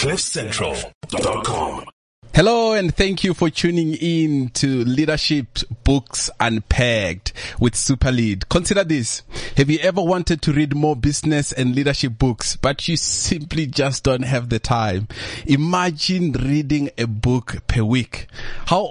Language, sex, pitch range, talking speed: English, male, 120-150 Hz, 135 wpm